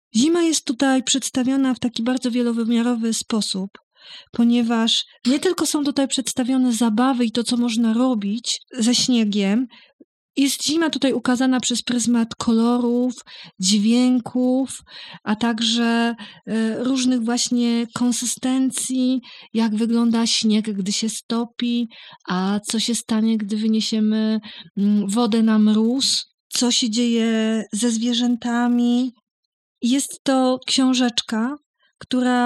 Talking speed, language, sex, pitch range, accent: 110 wpm, Polish, female, 225-255 Hz, native